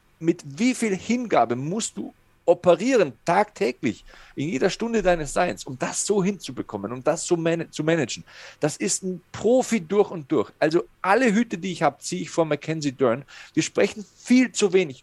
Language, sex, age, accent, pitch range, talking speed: German, male, 40-59, German, 145-190 Hz, 185 wpm